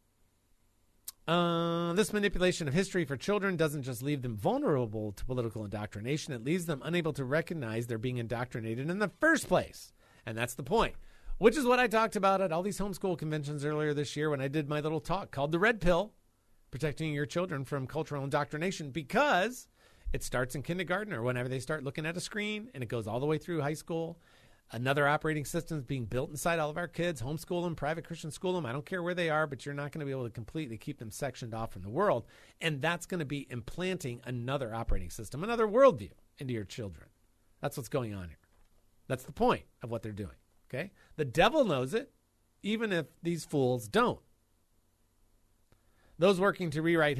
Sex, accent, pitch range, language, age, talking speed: male, American, 120-170 Hz, English, 40-59, 205 wpm